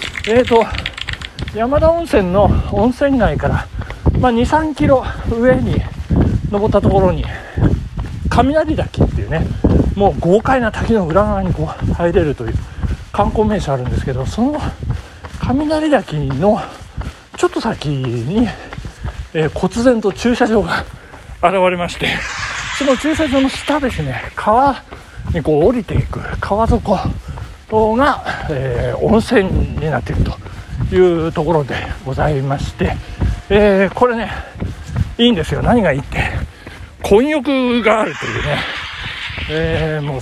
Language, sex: Japanese, male